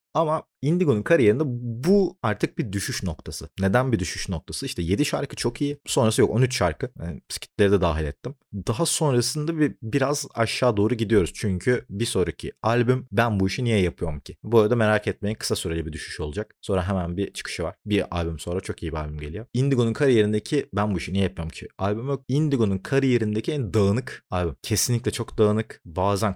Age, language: 30-49, Turkish